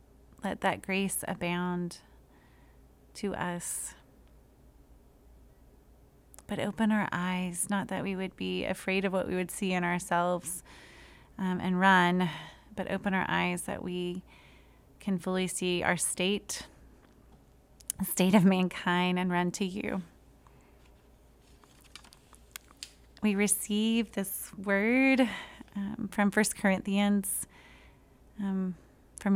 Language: English